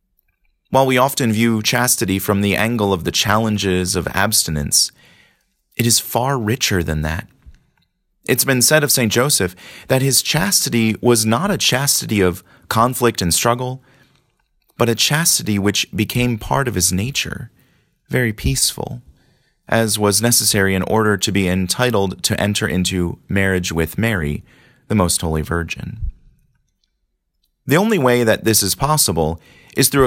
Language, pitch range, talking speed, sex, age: English, 95-125 Hz, 150 wpm, male, 30-49